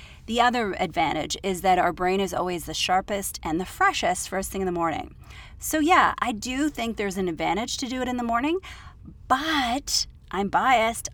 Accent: American